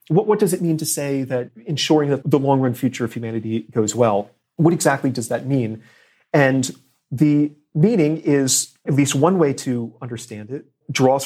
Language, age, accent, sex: English, 30-49, American, male